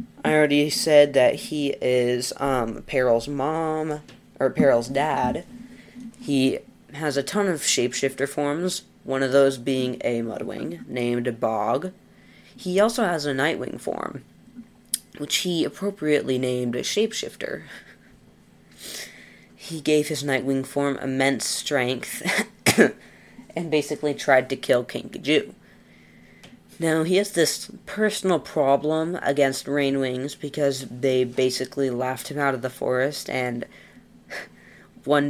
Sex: female